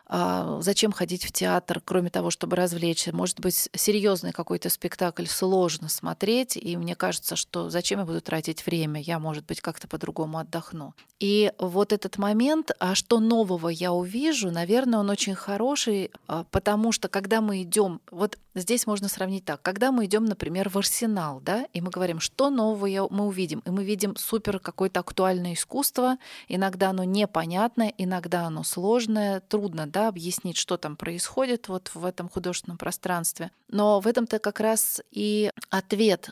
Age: 20-39